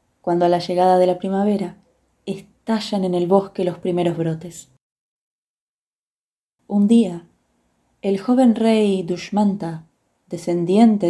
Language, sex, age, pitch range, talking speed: Spanish, female, 20-39, 175-215 Hz, 115 wpm